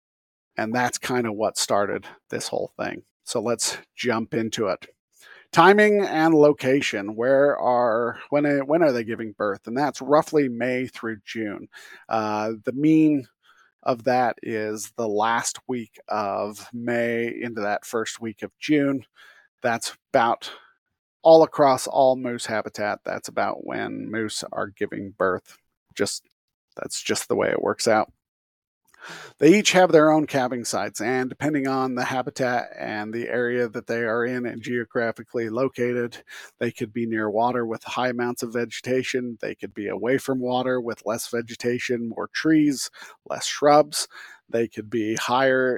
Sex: male